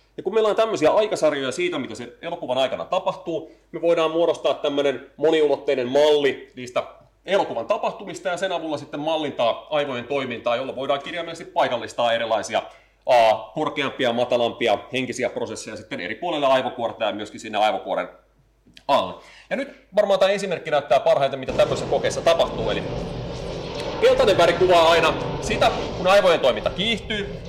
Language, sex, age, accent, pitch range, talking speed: Finnish, male, 30-49, native, 140-180 Hz, 145 wpm